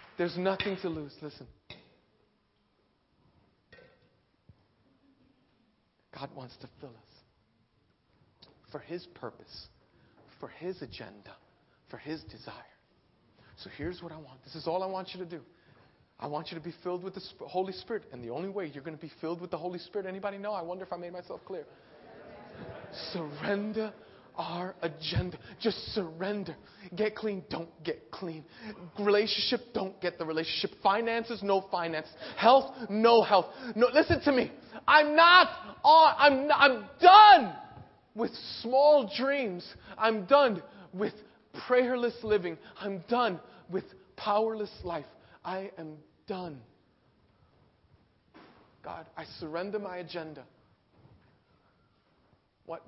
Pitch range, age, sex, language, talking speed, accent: 160-215 Hz, 40-59, male, English, 135 wpm, American